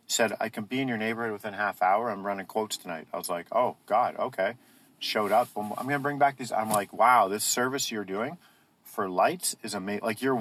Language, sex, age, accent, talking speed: English, male, 40-59, American, 240 wpm